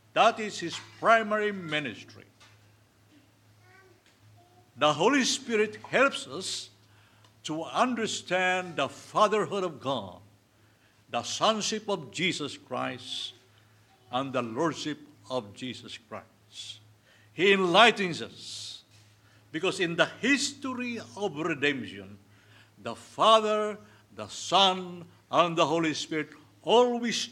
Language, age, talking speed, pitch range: English, 60-79, 100 wpm, 110-170 Hz